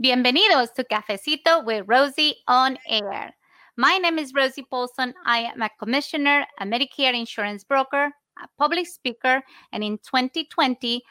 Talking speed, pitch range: 140 wpm, 230-295 Hz